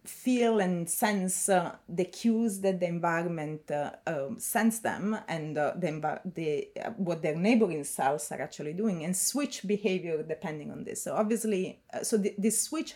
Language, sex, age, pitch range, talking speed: English, female, 30-49, 160-205 Hz, 180 wpm